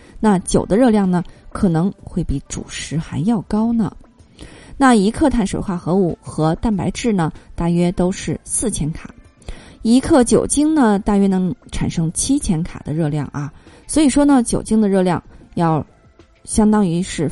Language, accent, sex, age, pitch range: Chinese, native, female, 20-39, 175-235 Hz